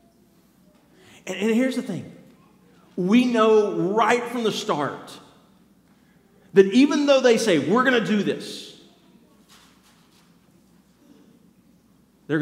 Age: 40-59